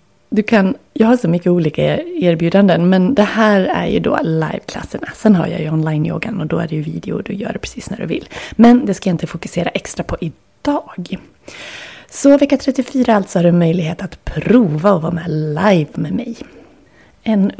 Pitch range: 165-215 Hz